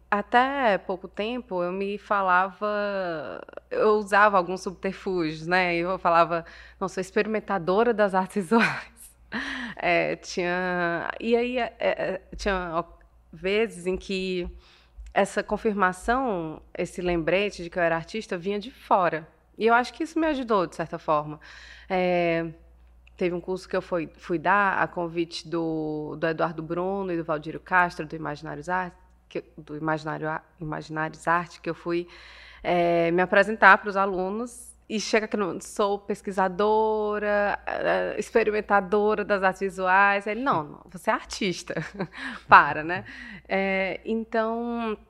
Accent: Brazilian